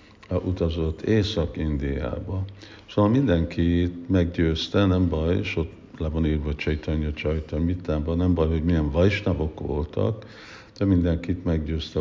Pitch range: 75-95 Hz